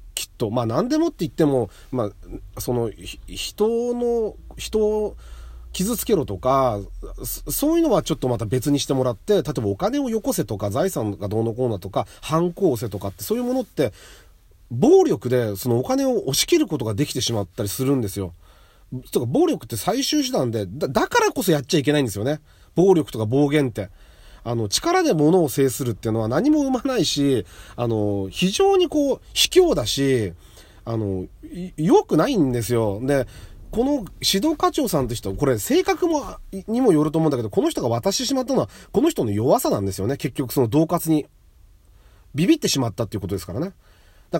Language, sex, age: Japanese, male, 40-59